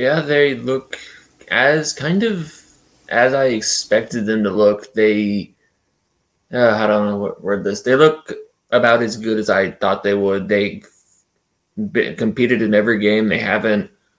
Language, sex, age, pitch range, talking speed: English, male, 20-39, 100-115 Hz, 155 wpm